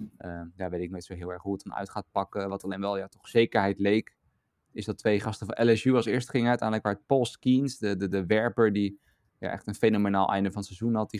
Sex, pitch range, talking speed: male, 100-120 Hz, 270 wpm